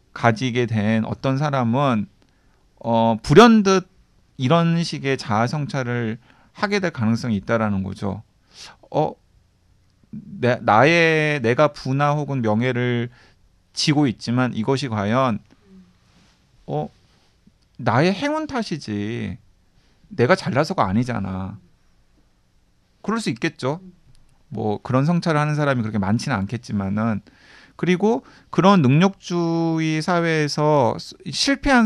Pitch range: 110-160 Hz